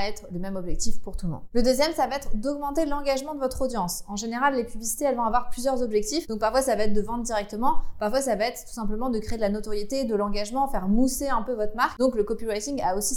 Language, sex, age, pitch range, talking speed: French, female, 20-39, 220-270 Hz, 270 wpm